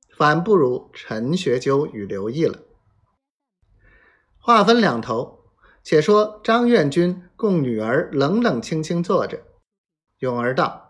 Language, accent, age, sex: Chinese, native, 50-69, male